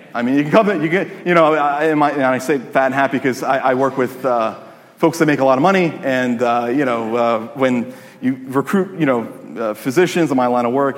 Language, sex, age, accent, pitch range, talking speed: English, male, 30-49, American, 125-180 Hz, 255 wpm